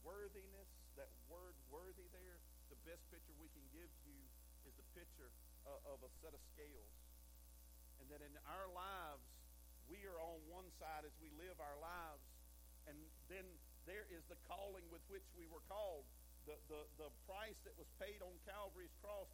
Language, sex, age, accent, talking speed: English, male, 50-69, American, 175 wpm